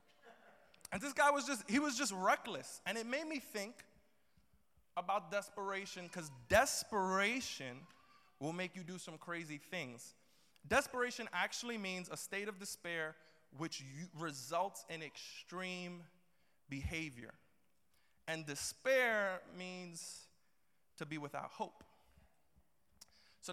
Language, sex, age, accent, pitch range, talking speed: English, male, 20-39, American, 155-215 Hz, 115 wpm